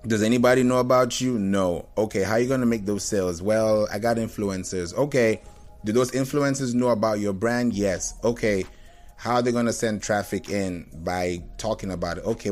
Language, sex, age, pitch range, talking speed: English, male, 30-49, 100-125 Hz, 200 wpm